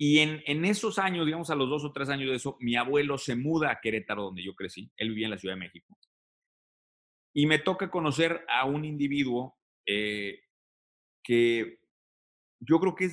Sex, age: male, 30-49